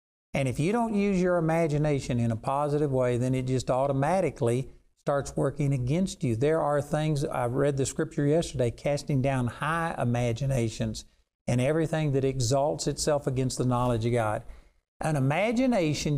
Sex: male